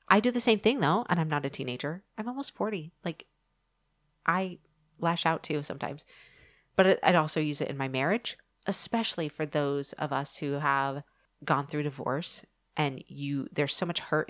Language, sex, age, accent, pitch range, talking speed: English, female, 30-49, American, 135-160 Hz, 185 wpm